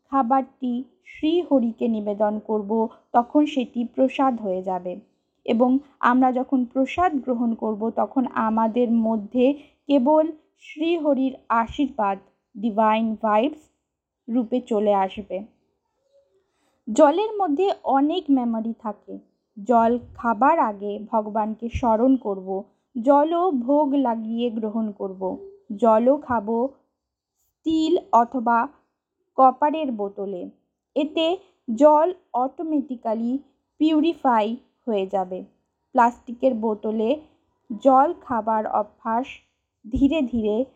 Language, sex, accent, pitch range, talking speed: Bengali, female, native, 220-295 Hz, 90 wpm